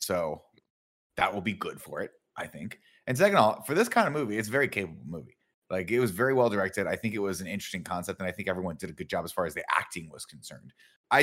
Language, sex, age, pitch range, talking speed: English, male, 30-49, 90-110 Hz, 280 wpm